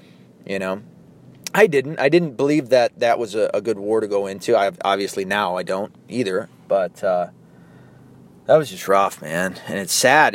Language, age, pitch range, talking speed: English, 30-49, 100-130 Hz, 190 wpm